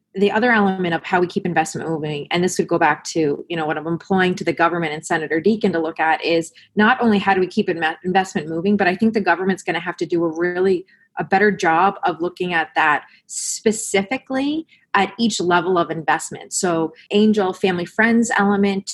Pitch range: 170-205 Hz